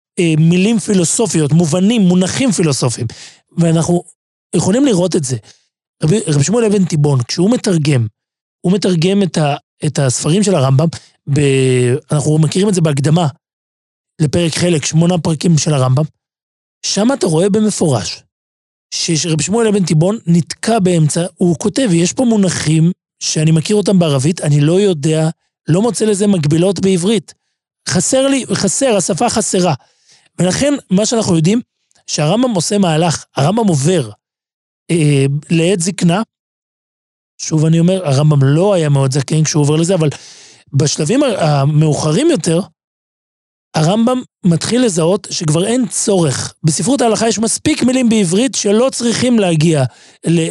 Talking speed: 135 wpm